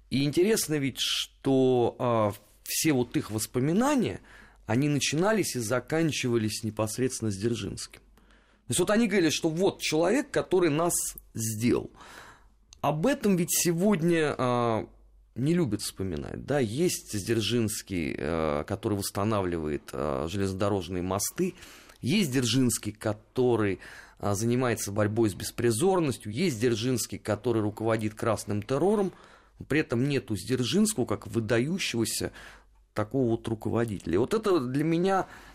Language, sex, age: Russian, male, 30-49